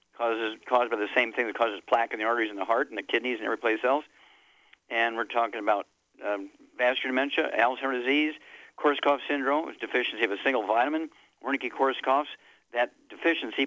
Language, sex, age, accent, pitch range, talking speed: English, male, 60-79, American, 120-150 Hz, 180 wpm